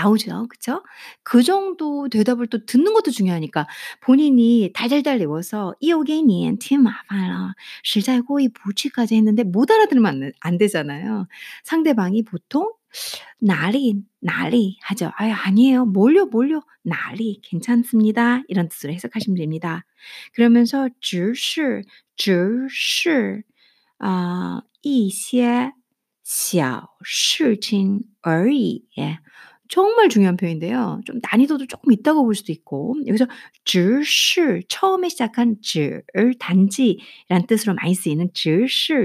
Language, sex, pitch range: Korean, female, 190-265 Hz